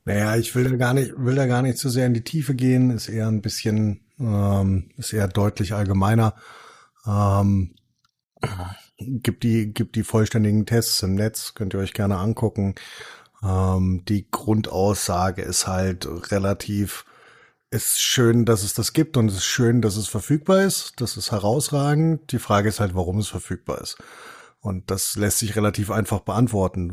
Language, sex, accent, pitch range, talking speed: German, male, German, 100-115 Hz, 170 wpm